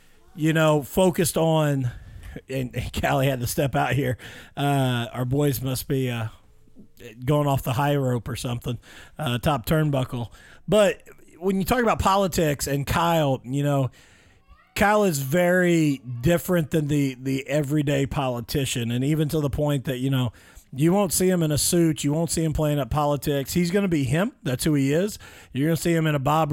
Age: 40-59